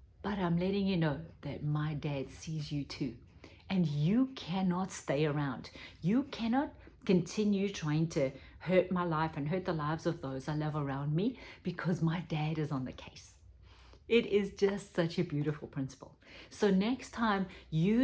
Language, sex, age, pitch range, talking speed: English, female, 40-59, 150-195 Hz, 175 wpm